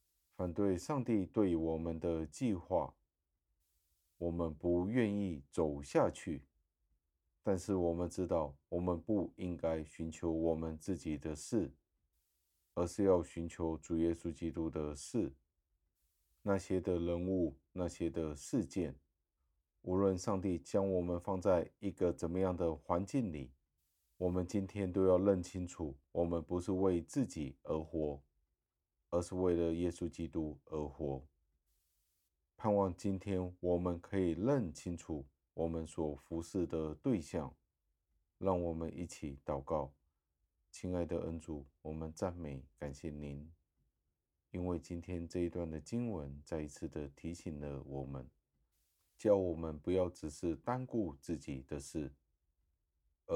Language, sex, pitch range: Chinese, male, 75-90 Hz